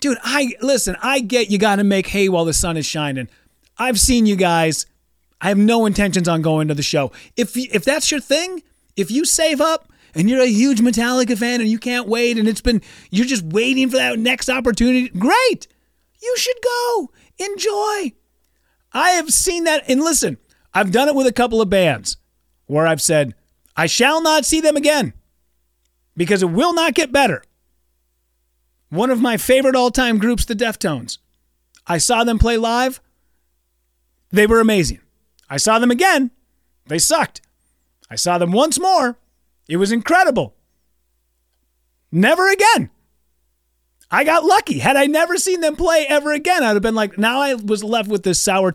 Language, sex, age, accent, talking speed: English, male, 30-49, American, 180 wpm